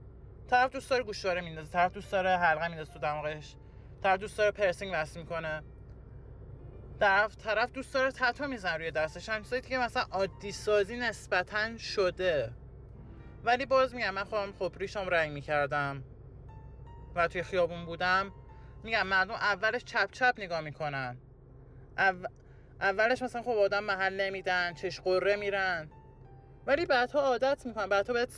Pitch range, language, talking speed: 155-240 Hz, English, 140 wpm